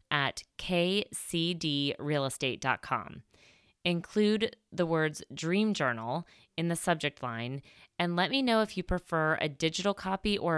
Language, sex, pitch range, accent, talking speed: English, female, 145-190 Hz, American, 125 wpm